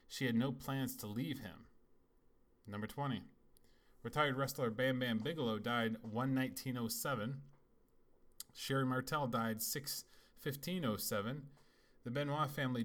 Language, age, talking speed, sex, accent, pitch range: English, 30-49, 140 wpm, male, American, 115-135 Hz